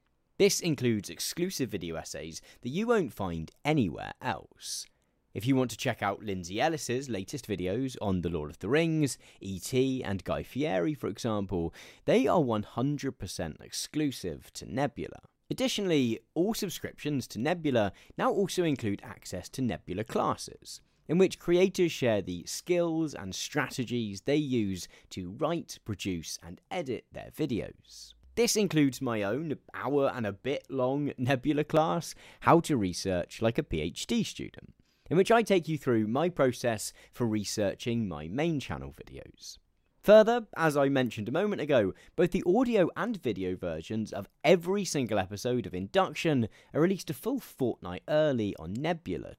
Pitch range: 100-165 Hz